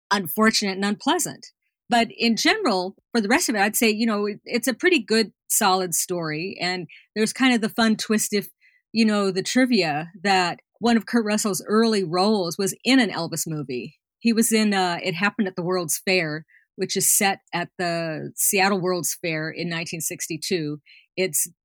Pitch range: 170-220 Hz